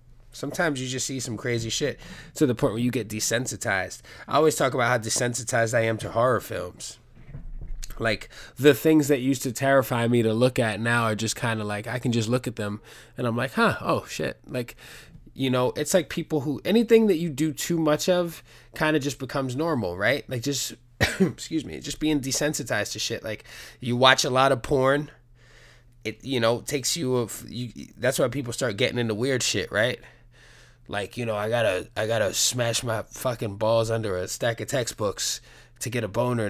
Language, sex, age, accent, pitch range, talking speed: English, male, 20-39, American, 115-140 Hz, 210 wpm